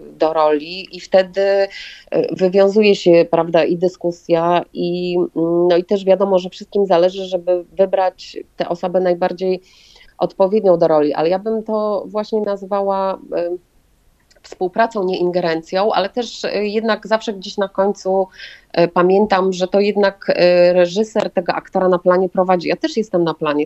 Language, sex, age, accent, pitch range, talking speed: Polish, female, 30-49, native, 160-190 Hz, 140 wpm